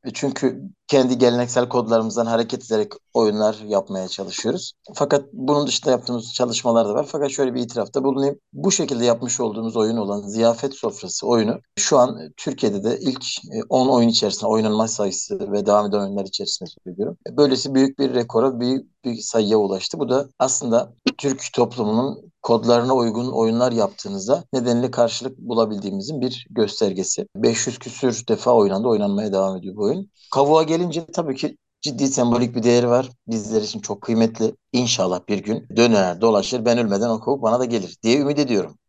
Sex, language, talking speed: male, English, 160 wpm